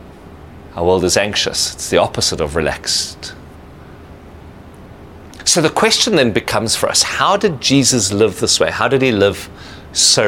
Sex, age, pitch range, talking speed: male, 40-59, 90-135 Hz, 160 wpm